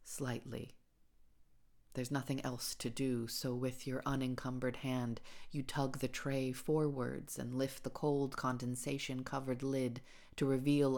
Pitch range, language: 120-140 Hz, English